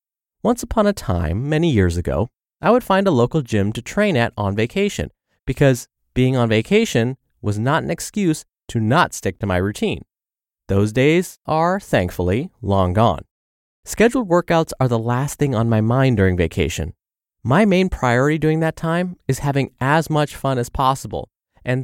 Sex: male